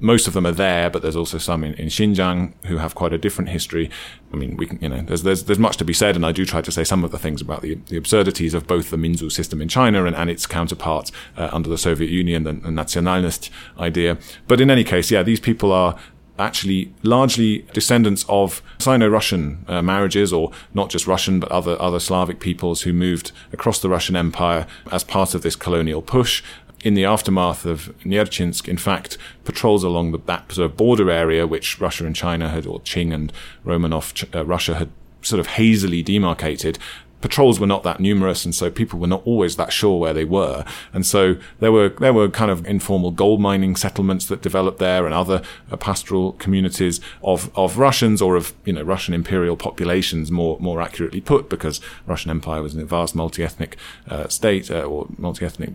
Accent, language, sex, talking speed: British, English, male, 205 wpm